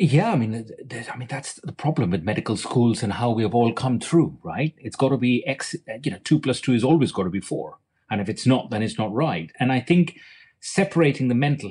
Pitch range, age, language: 115-165 Hz, 30-49, English